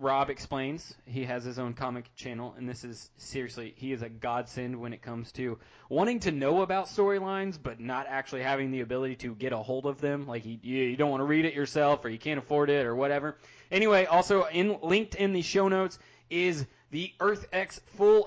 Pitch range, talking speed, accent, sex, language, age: 125-165 Hz, 215 wpm, American, male, English, 20-39